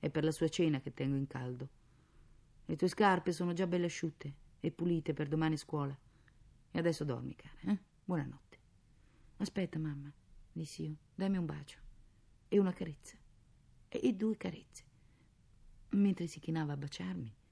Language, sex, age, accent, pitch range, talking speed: Italian, female, 40-59, native, 125-185 Hz, 160 wpm